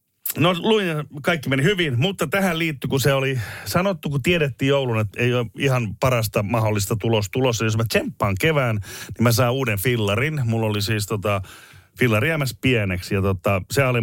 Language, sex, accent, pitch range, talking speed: Finnish, male, native, 100-130 Hz, 185 wpm